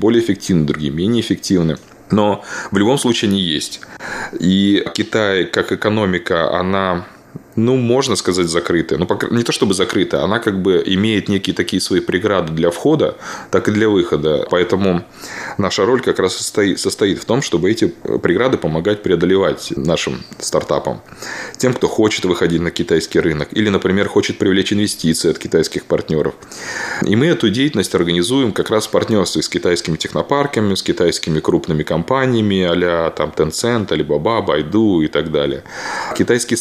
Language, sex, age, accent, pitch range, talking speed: Russian, male, 20-39, native, 85-110 Hz, 155 wpm